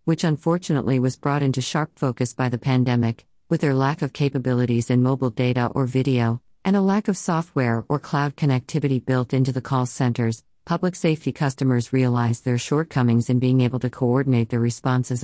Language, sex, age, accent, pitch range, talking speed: English, female, 50-69, American, 125-155 Hz, 180 wpm